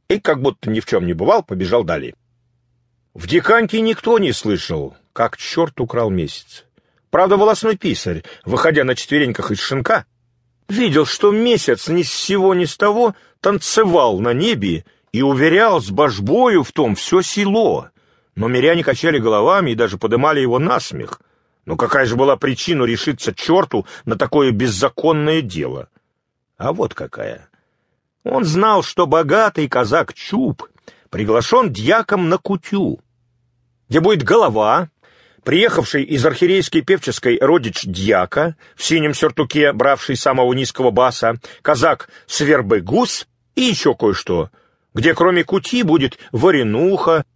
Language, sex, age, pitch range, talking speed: English, male, 40-59, 120-185 Hz, 135 wpm